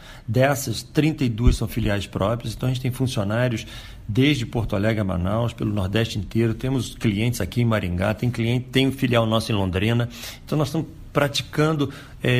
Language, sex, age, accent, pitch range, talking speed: Portuguese, male, 50-69, Brazilian, 110-135 Hz, 175 wpm